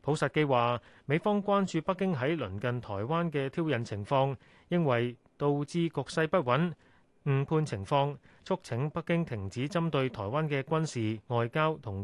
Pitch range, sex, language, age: 120-155 Hz, male, Chinese, 30-49